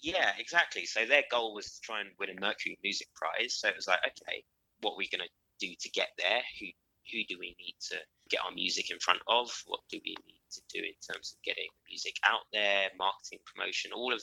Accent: British